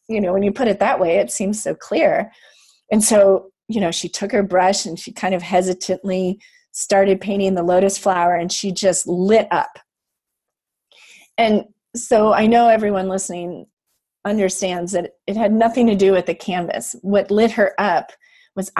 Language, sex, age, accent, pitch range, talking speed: English, female, 30-49, American, 175-215 Hz, 180 wpm